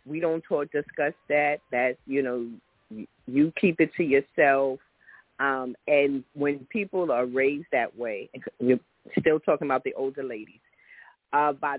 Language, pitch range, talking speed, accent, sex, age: English, 130-155 Hz, 160 wpm, American, female, 40-59